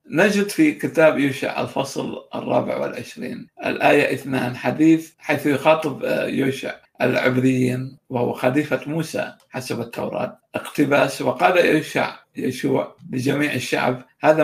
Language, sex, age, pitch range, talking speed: Arabic, male, 60-79, 130-150 Hz, 110 wpm